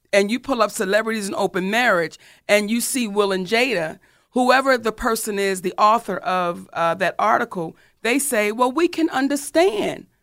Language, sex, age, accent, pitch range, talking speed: English, female, 40-59, American, 185-255 Hz, 175 wpm